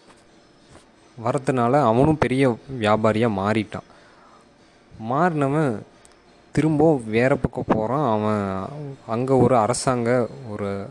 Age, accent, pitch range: 20-39, native, 105-135 Hz